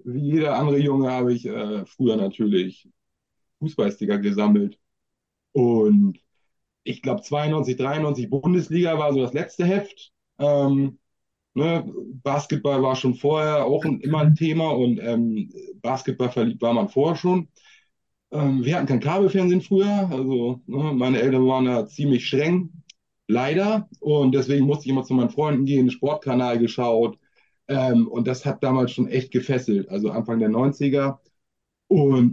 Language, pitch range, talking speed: German, 125-150 Hz, 150 wpm